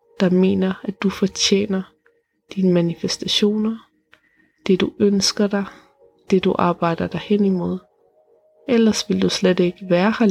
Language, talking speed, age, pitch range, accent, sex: Danish, 140 wpm, 20-39, 185-220 Hz, native, female